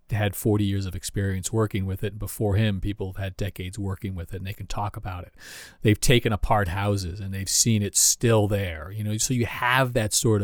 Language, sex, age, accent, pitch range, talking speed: English, male, 40-59, American, 100-115 Hz, 235 wpm